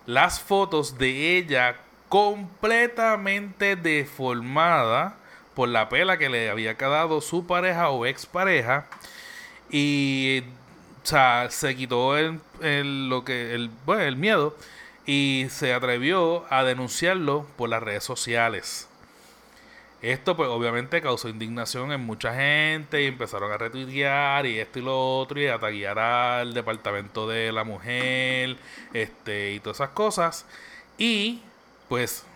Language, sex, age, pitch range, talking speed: Spanish, male, 30-49, 125-165 Hz, 120 wpm